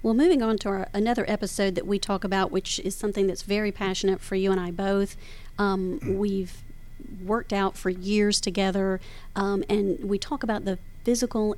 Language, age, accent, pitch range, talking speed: English, 40-59, American, 190-205 Hz, 180 wpm